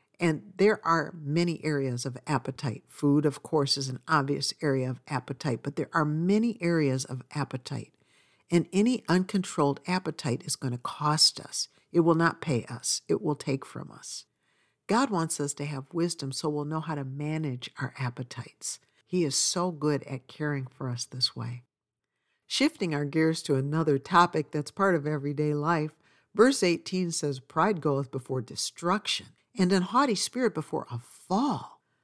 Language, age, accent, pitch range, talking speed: English, 60-79, American, 135-170 Hz, 170 wpm